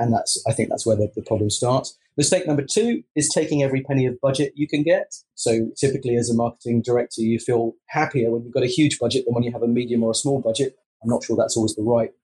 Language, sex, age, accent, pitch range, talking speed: English, male, 30-49, British, 115-145 Hz, 265 wpm